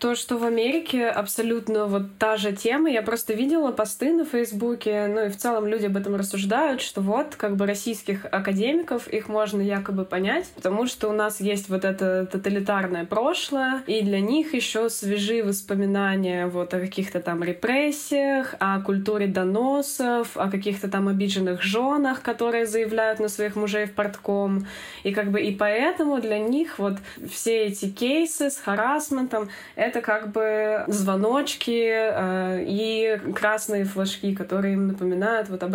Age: 20-39